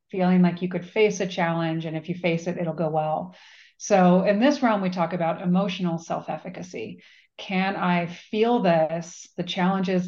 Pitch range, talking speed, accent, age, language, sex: 170-195 Hz, 180 wpm, American, 30-49, English, female